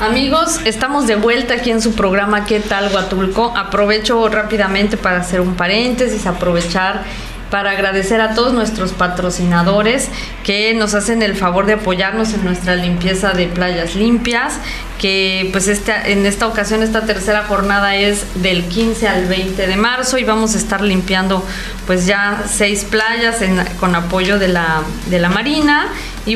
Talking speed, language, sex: 160 wpm, Spanish, female